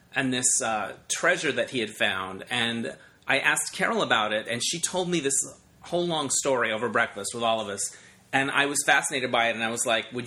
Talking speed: 230 wpm